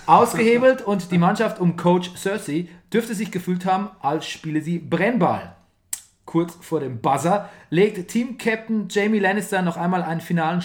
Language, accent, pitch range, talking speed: German, German, 155-195 Hz, 150 wpm